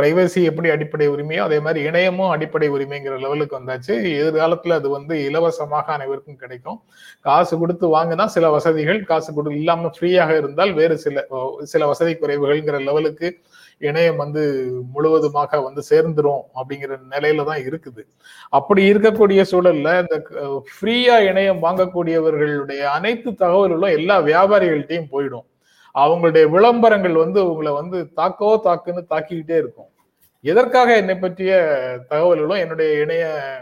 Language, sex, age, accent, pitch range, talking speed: Tamil, male, 30-49, native, 150-190 Hz, 120 wpm